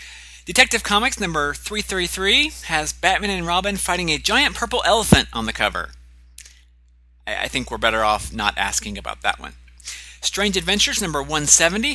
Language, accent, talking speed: English, American, 150 wpm